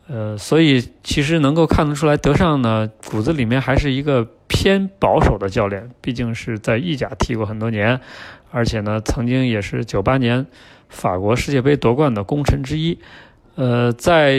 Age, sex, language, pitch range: 20-39, male, Chinese, 110-135 Hz